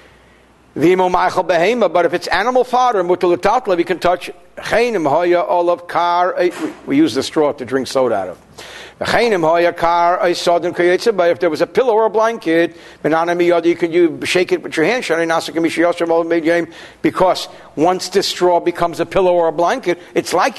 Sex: male